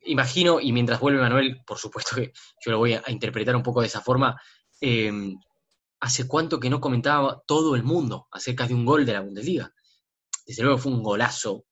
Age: 20-39